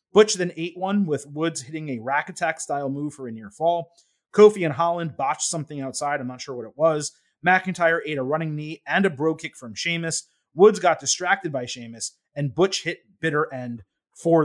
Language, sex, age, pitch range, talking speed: English, male, 30-49, 150-205 Hz, 210 wpm